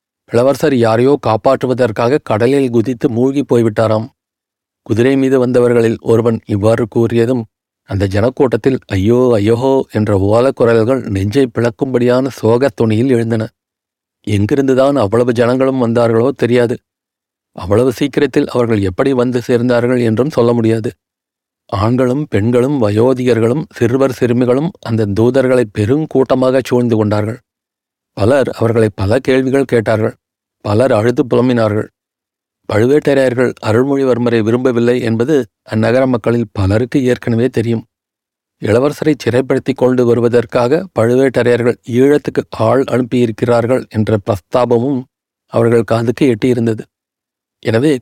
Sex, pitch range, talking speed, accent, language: male, 115-130 Hz, 100 wpm, native, Tamil